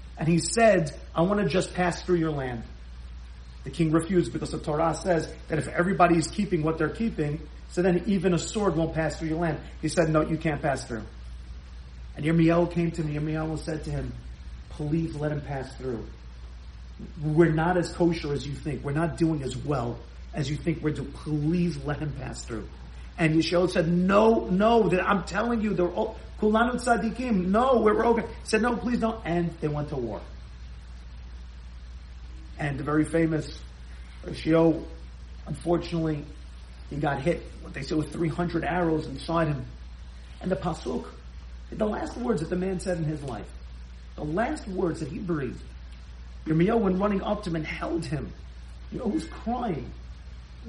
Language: English